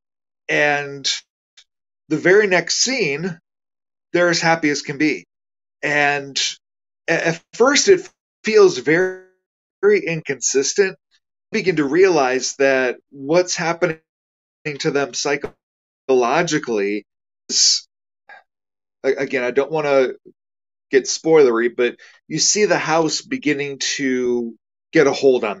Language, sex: English, male